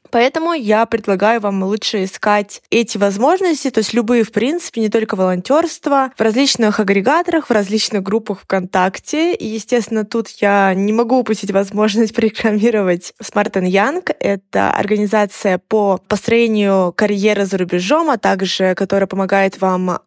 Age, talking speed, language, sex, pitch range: 20-39, 140 wpm, Russian, female, 200-270 Hz